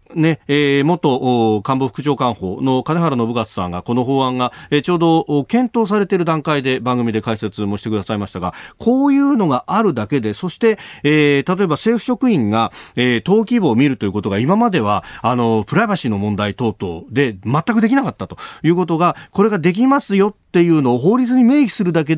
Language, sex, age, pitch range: Japanese, male, 40-59, 110-180 Hz